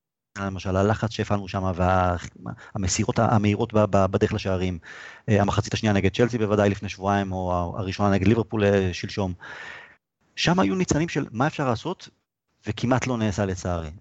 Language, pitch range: Hebrew, 100-125 Hz